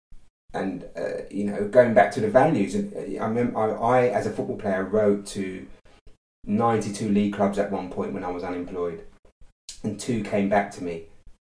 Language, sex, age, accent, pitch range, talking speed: English, male, 30-49, British, 100-110 Hz, 185 wpm